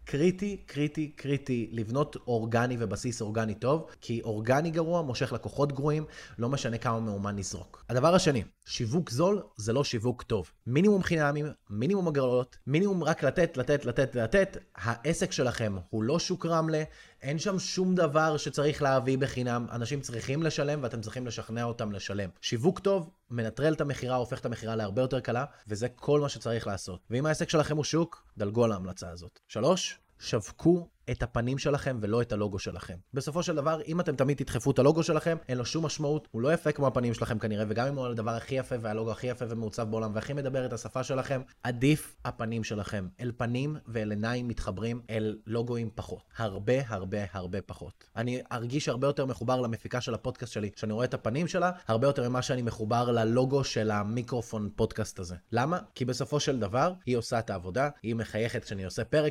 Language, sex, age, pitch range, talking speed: Hebrew, male, 20-39, 110-145 Hz, 165 wpm